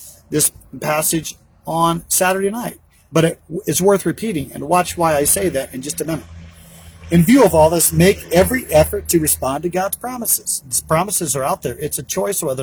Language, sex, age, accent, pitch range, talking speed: English, male, 50-69, American, 145-185 Hz, 200 wpm